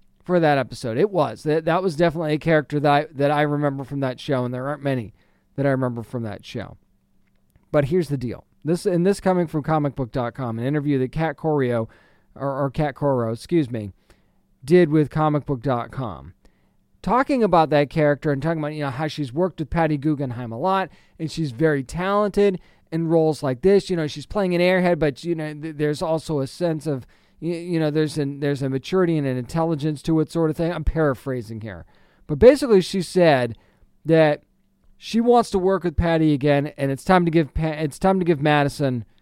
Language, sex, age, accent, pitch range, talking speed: English, male, 40-59, American, 130-175 Hz, 205 wpm